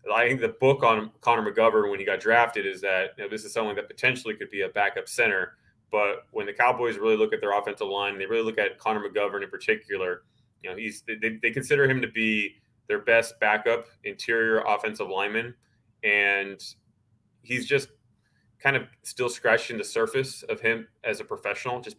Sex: male